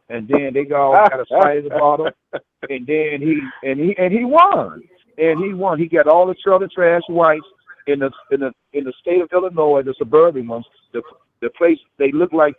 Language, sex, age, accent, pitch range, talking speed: English, male, 50-69, American, 145-190 Hz, 215 wpm